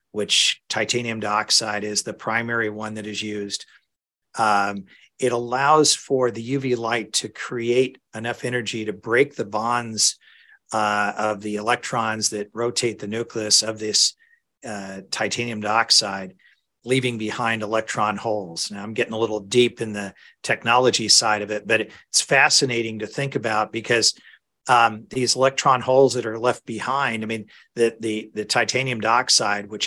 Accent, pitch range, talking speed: American, 105-125 Hz, 155 wpm